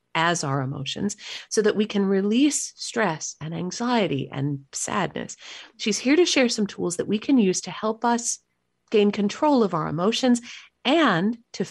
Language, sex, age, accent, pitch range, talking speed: English, female, 40-59, American, 155-225 Hz, 170 wpm